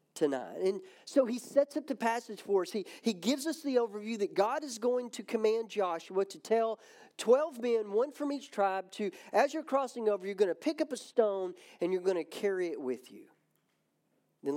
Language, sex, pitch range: English, male, 175-240 Hz